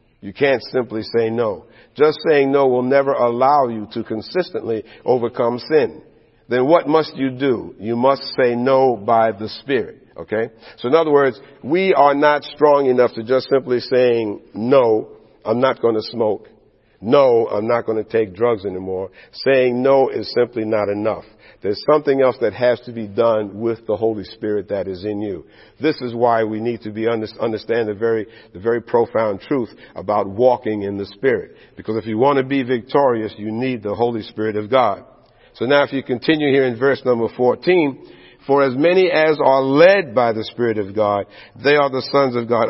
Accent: American